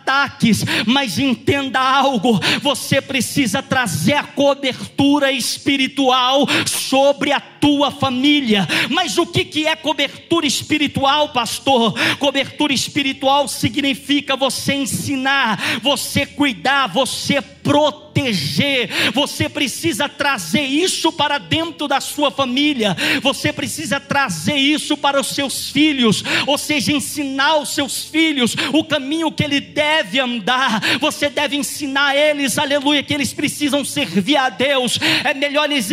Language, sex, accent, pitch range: Portuguese, male, Brazilian, 270-295 Hz